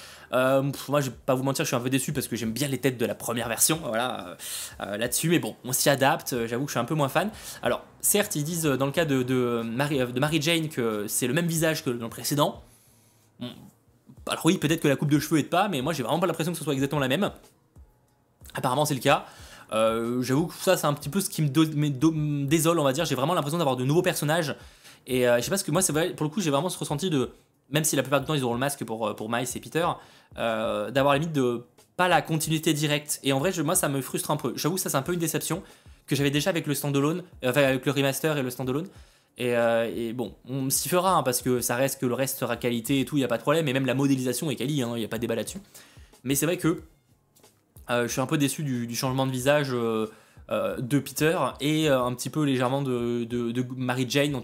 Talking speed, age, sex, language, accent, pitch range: 280 wpm, 20-39, male, French, French, 125-155 Hz